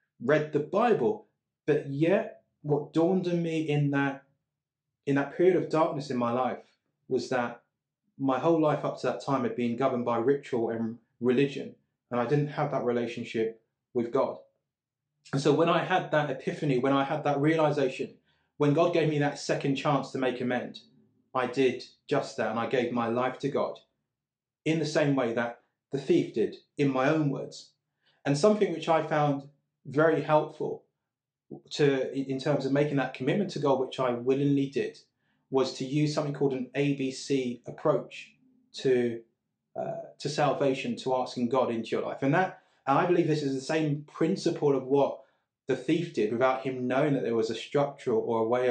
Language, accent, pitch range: English, British, 130-155 Hz